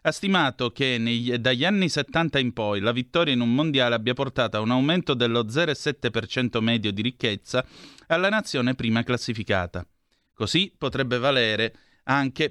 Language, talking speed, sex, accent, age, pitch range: Italian, 150 wpm, male, native, 30-49, 115-150 Hz